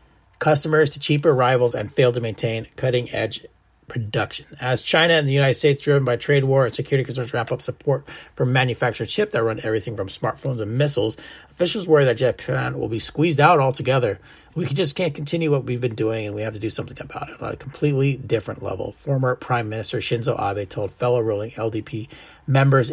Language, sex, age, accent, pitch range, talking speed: English, male, 30-49, American, 120-150 Hz, 200 wpm